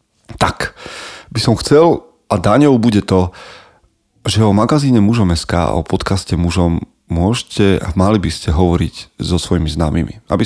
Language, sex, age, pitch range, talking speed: Slovak, male, 30-49, 85-105 Hz, 145 wpm